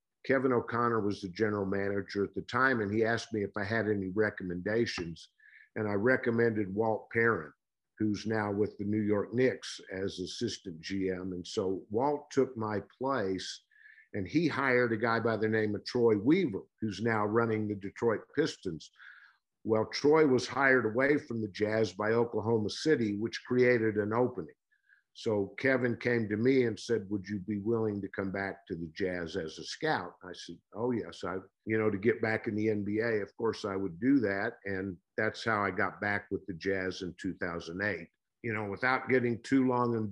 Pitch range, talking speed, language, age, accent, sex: 100-120 Hz, 190 wpm, English, 50-69, American, male